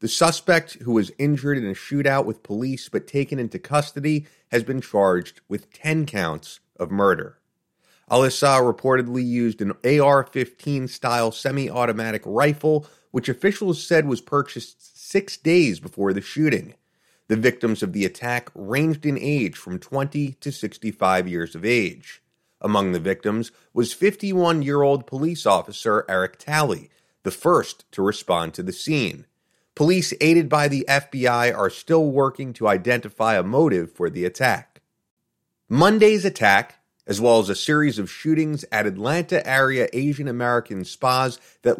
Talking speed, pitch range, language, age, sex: 145 wpm, 110-145 Hz, English, 30-49, male